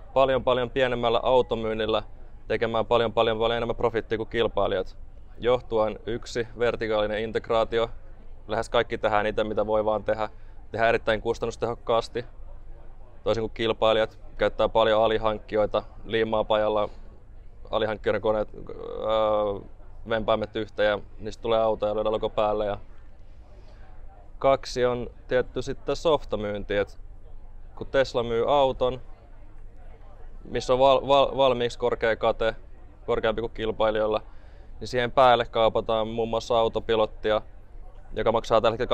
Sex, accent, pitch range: male, native, 105-115 Hz